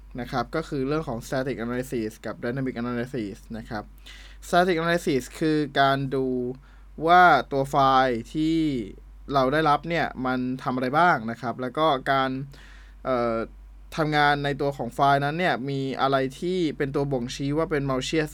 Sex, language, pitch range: male, Thai, 120-160 Hz